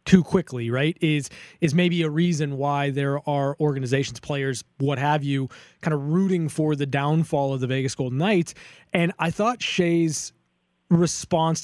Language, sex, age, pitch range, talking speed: English, male, 20-39, 145-175 Hz, 165 wpm